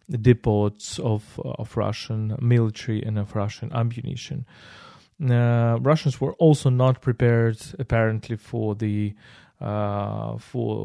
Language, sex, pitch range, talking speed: English, male, 110-125 Hz, 110 wpm